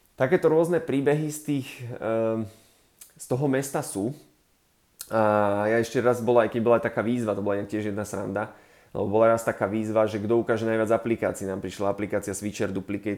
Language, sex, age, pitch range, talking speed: Slovak, male, 20-39, 105-115 Hz, 170 wpm